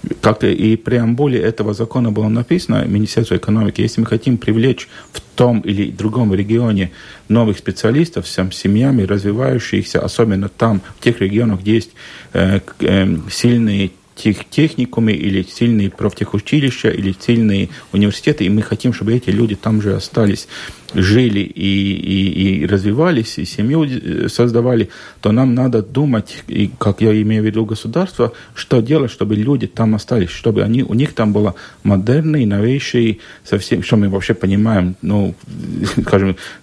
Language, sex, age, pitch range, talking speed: Russian, male, 40-59, 100-125 Hz, 145 wpm